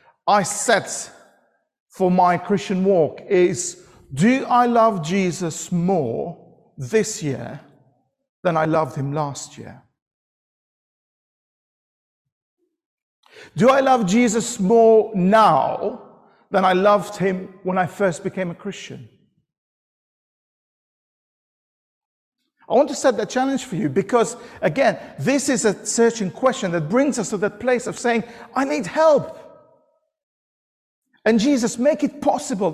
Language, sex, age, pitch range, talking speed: English, male, 50-69, 180-255 Hz, 125 wpm